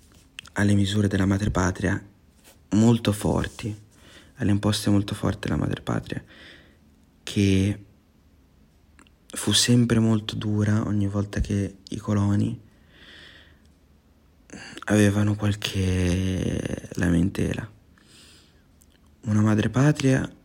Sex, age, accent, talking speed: male, 30-49, native, 90 wpm